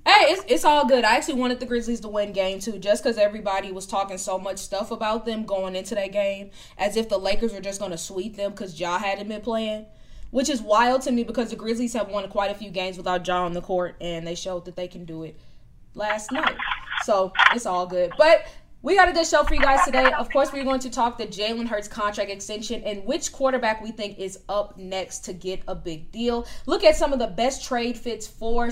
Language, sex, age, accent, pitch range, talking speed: English, female, 20-39, American, 195-255 Hz, 250 wpm